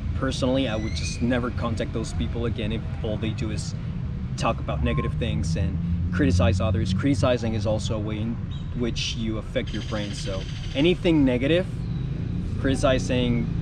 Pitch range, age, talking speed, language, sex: 110-135 Hz, 20-39, 160 wpm, English, male